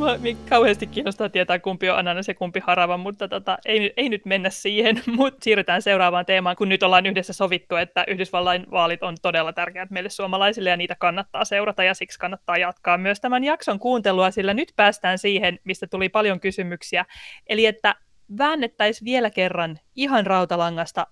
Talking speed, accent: 175 wpm, native